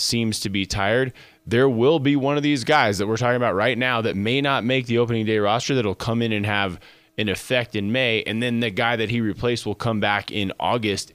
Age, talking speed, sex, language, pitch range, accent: 20-39, 250 wpm, male, English, 95-120 Hz, American